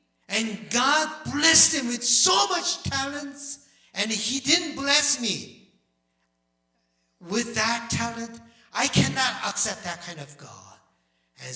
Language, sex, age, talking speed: English, male, 60-79, 125 wpm